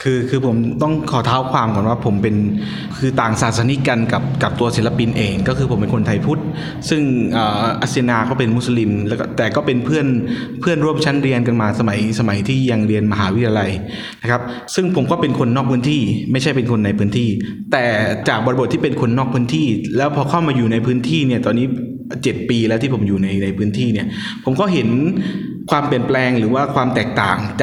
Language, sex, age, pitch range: Thai, male, 20-39, 110-135 Hz